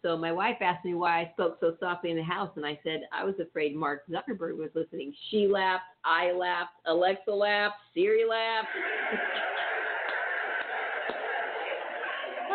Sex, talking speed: female, 155 wpm